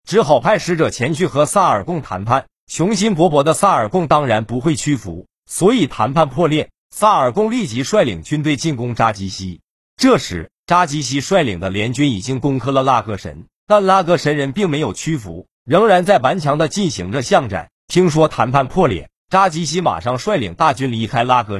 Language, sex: Chinese, male